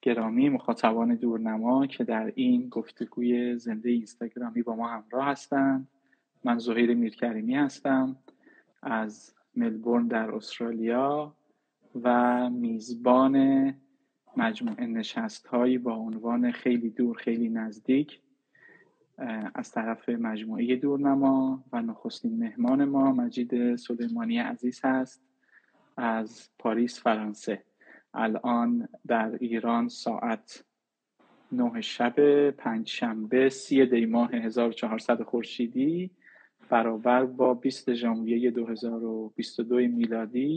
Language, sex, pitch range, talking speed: Persian, male, 120-140 Hz, 95 wpm